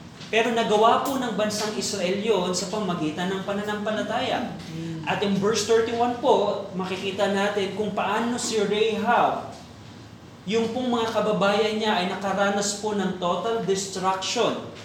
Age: 20-39